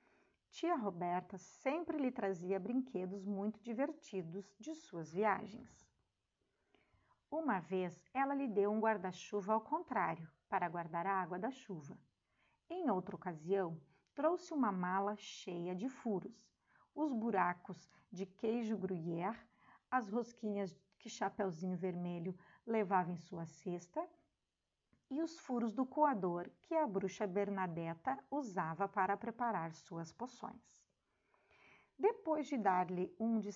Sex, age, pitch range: female, 50-69, 185-255 Hz